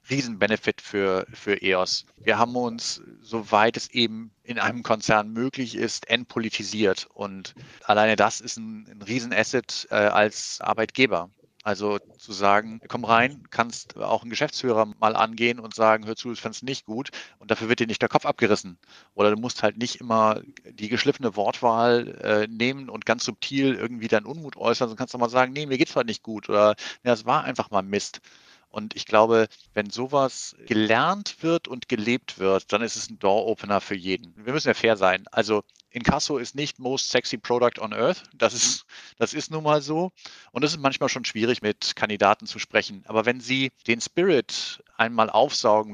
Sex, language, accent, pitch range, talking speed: male, German, German, 110-130 Hz, 190 wpm